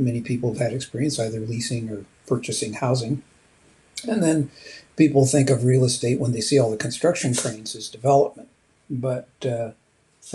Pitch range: 115-140 Hz